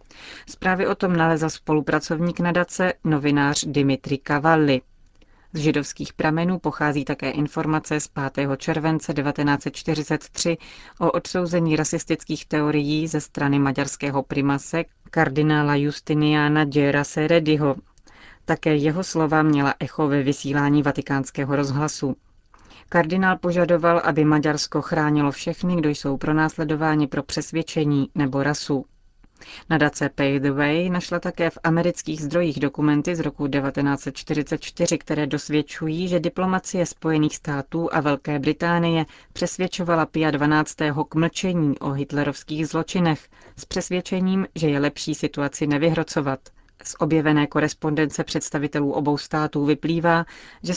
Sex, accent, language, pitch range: female, native, Czech, 145-165 Hz